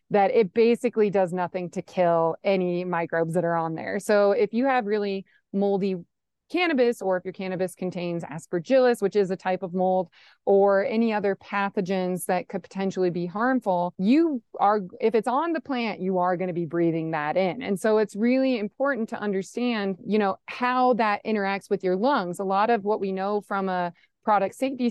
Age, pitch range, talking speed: 30-49, 185-235 Hz, 195 wpm